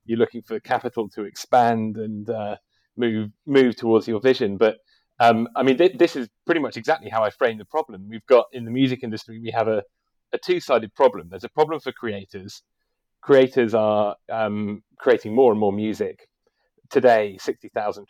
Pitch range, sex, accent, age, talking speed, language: 105-125 Hz, male, British, 30-49, 180 wpm, English